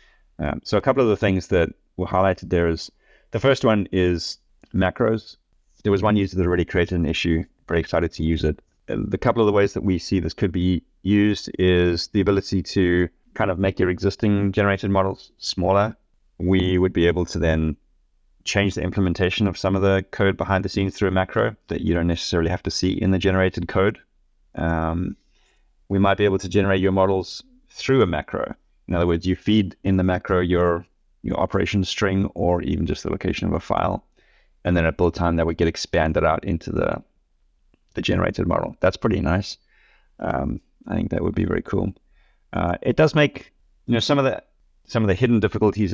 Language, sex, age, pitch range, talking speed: English, male, 30-49, 85-100 Hz, 205 wpm